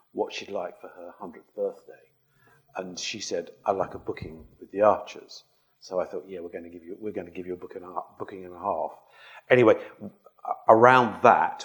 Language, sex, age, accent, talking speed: English, male, 50-69, British, 210 wpm